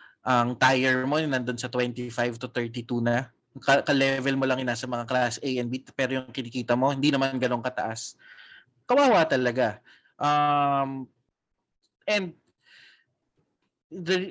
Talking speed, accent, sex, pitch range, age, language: 130 wpm, native, male, 120-150 Hz, 20-39, Filipino